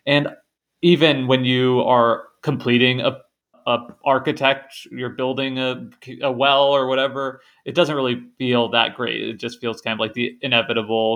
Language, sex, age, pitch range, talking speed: English, male, 20-39, 115-140 Hz, 160 wpm